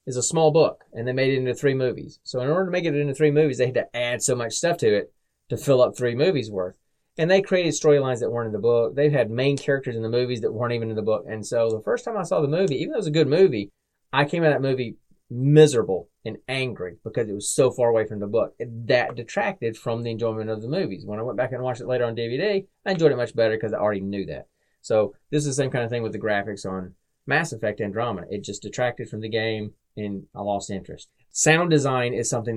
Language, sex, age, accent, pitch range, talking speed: English, male, 30-49, American, 110-135 Hz, 275 wpm